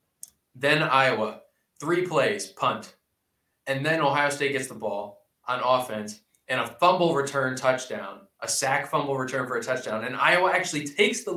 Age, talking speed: 20-39, 165 wpm